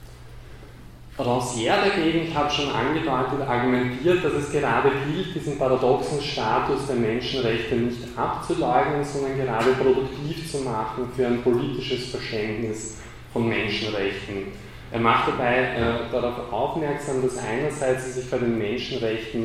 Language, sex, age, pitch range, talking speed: German, male, 20-39, 115-135 Hz, 130 wpm